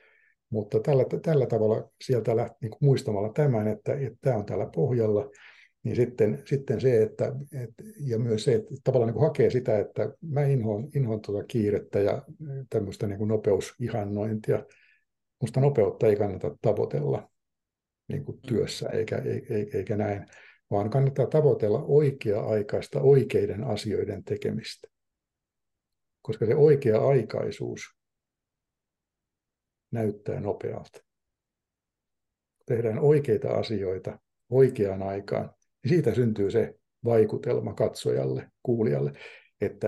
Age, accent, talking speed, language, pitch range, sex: 60-79, native, 115 wpm, Finnish, 105-135 Hz, male